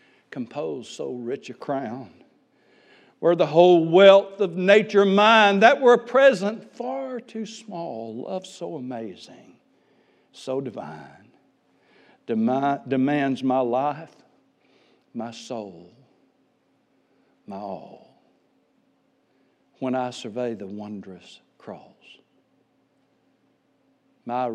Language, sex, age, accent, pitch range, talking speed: English, male, 60-79, American, 135-220 Hz, 90 wpm